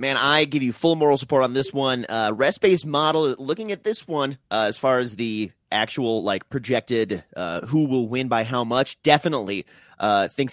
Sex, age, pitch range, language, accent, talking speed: male, 30-49, 120-165 Hz, English, American, 200 wpm